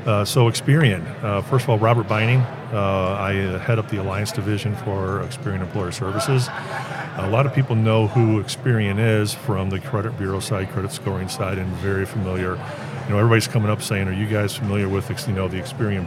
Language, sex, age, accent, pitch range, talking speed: English, male, 40-59, American, 95-130 Hz, 205 wpm